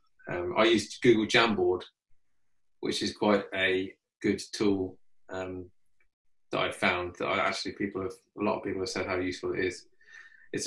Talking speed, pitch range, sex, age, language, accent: 175 wpm, 95-120 Hz, male, 20-39, English, British